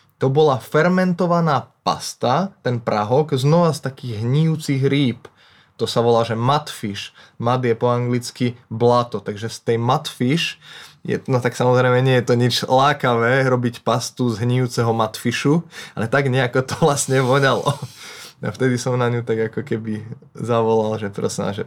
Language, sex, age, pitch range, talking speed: Slovak, male, 20-39, 120-150 Hz, 150 wpm